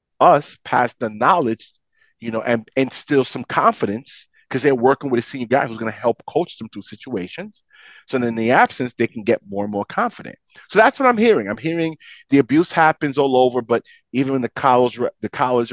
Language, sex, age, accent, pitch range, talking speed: English, male, 30-49, American, 120-165 Hz, 205 wpm